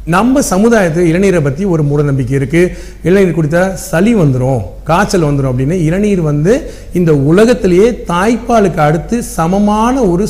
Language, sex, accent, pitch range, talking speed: Tamil, male, native, 155-210 Hz, 135 wpm